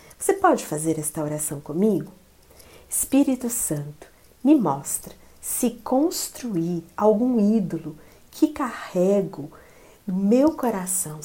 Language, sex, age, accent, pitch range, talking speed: Portuguese, female, 50-69, Brazilian, 160-235 Hz, 95 wpm